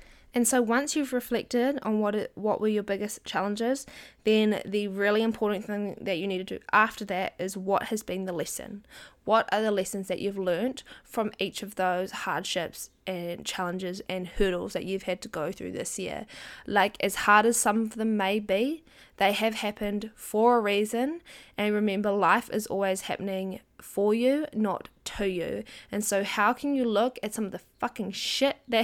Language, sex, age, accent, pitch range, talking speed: English, female, 10-29, Australian, 195-235 Hz, 195 wpm